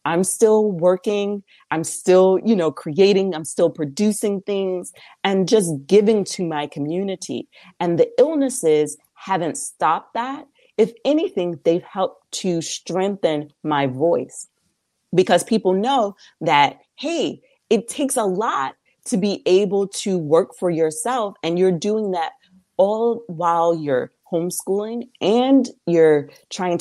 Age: 30-49